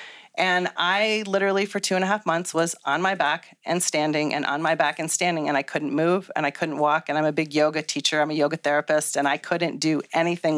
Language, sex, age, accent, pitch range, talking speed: English, female, 40-59, American, 150-185 Hz, 250 wpm